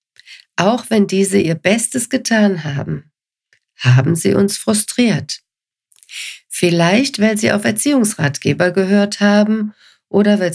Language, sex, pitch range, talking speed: German, female, 160-210 Hz, 115 wpm